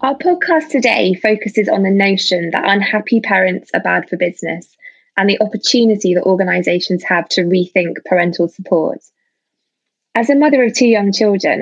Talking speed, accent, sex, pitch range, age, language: 160 wpm, British, female, 175-210 Hz, 20-39, English